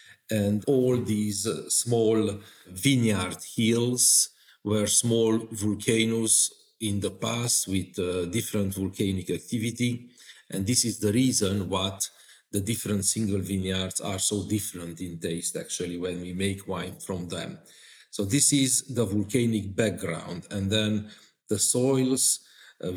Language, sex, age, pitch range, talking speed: English, male, 40-59, 100-115 Hz, 135 wpm